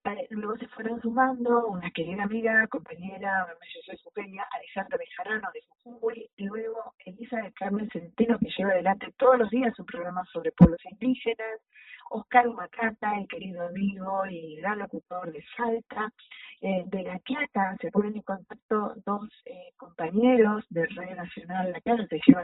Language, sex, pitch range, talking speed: Spanish, female, 190-250 Hz, 160 wpm